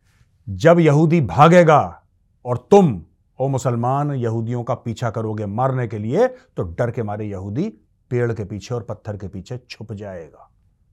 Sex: male